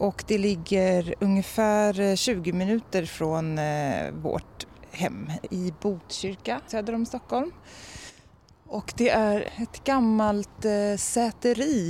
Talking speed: 100 wpm